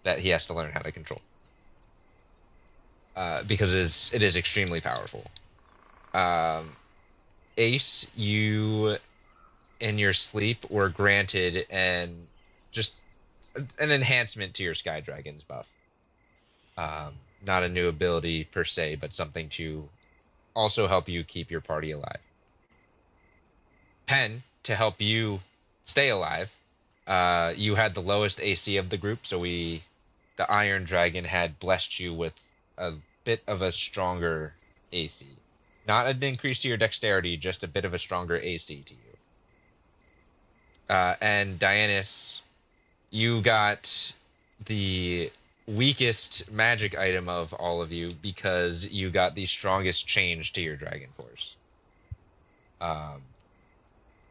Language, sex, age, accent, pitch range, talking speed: English, male, 20-39, American, 85-105 Hz, 130 wpm